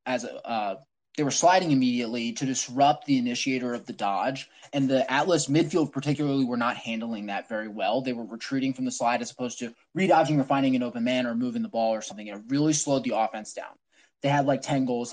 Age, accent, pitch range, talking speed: 20-39, American, 125-155 Hz, 220 wpm